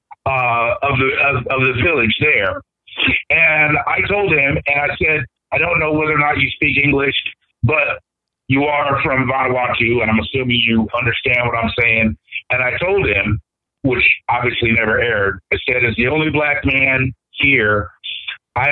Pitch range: 120-165 Hz